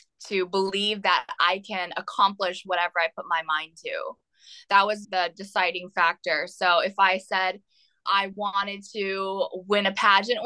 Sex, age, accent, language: female, 20-39, American, English